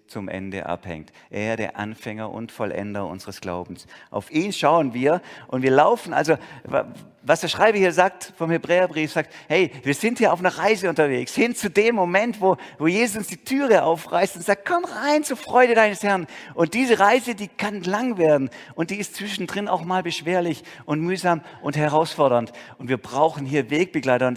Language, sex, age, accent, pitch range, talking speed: German, male, 50-69, German, 115-185 Hz, 190 wpm